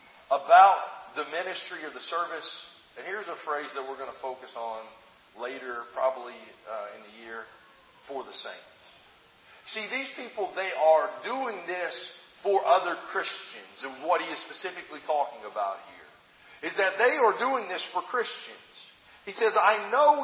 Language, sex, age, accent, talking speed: English, male, 40-59, American, 165 wpm